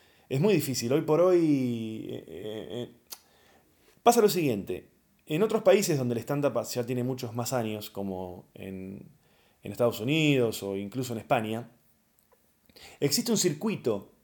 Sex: male